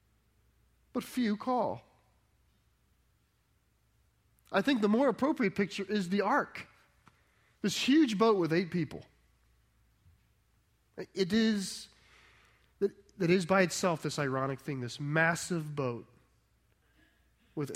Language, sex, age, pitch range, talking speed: English, male, 30-49, 135-185 Hz, 105 wpm